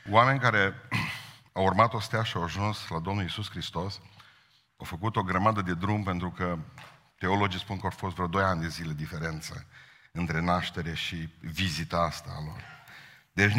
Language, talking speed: Romanian, 175 wpm